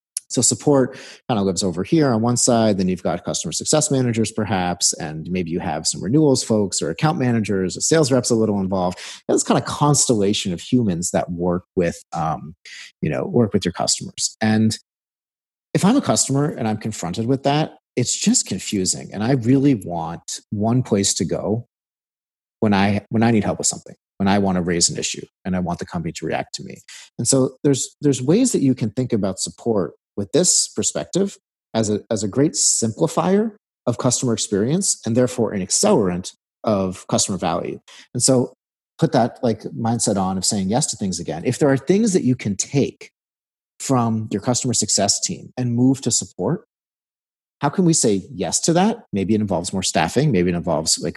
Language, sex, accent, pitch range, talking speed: English, male, American, 95-135 Hz, 200 wpm